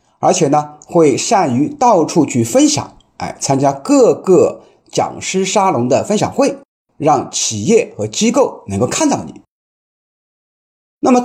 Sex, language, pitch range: male, Chinese, 140-235 Hz